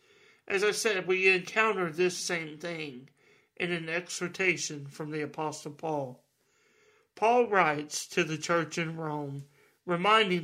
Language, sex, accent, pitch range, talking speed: English, male, American, 155-205 Hz, 130 wpm